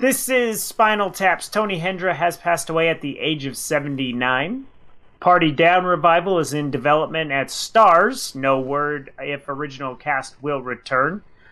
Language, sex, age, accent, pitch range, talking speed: English, male, 30-49, American, 140-190 Hz, 150 wpm